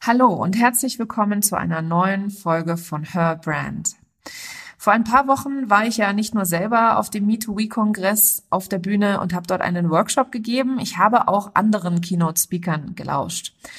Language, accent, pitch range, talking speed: German, German, 180-230 Hz, 180 wpm